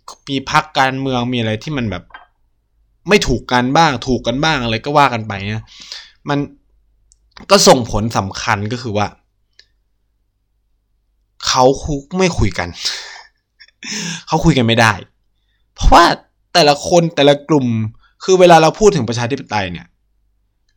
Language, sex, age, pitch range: Thai, male, 20-39, 105-145 Hz